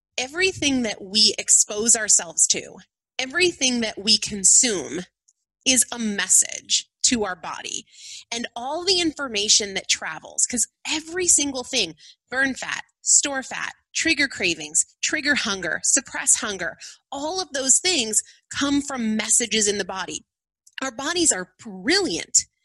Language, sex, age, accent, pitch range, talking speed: English, female, 30-49, American, 215-310 Hz, 130 wpm